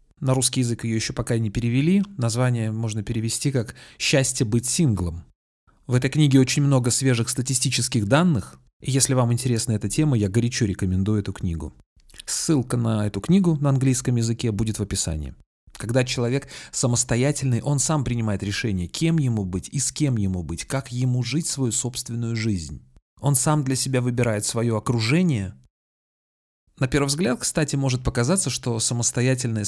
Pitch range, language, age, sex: 110-135 Hz, Russian, 30-49, male